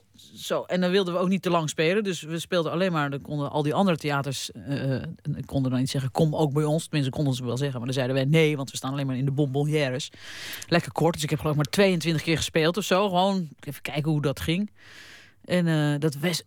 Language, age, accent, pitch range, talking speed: Dutch, 40-59, Dutch, 135-180 Hz, 260 wpm